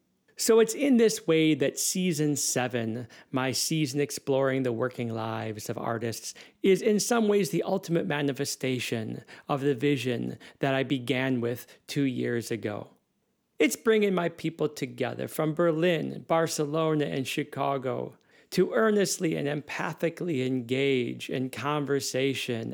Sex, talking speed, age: male, 130 wpm, 40-59